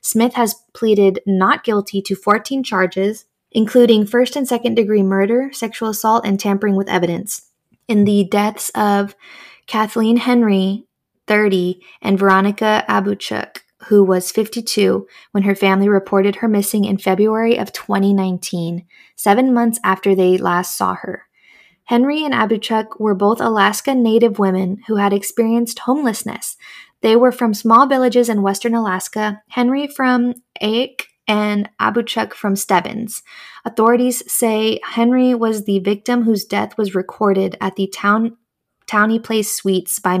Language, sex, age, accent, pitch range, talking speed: English, female, 20-39, American, 195-230 Hz, 140 wpm